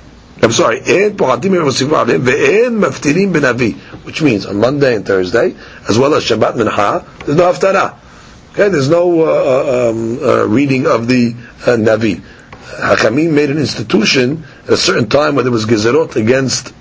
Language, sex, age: English, male, 50-69